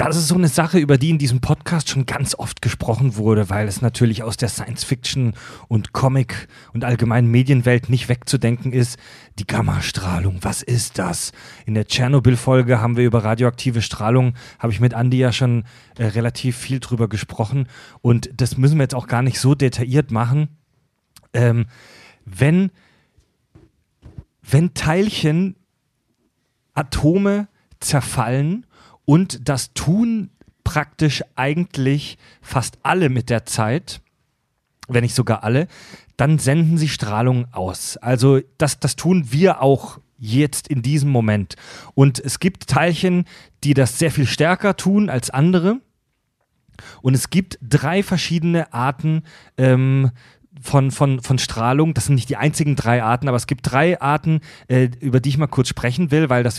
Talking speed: 155 wpm